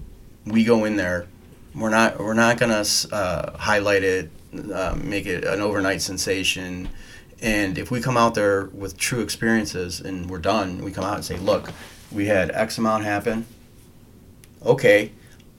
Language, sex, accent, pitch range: English, male, American, 100-125 Hz